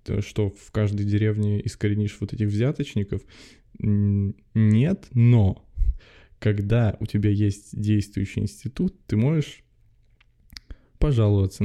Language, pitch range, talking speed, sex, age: Russian, 100-115 Hz, 100 wpm, male, 20-39